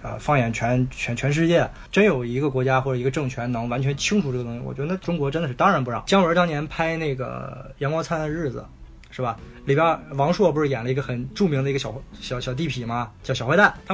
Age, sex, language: 20-39, male, Chinese